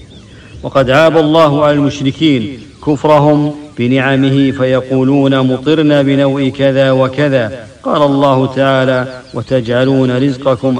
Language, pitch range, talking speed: English, 130-140 Hz, 95 wpm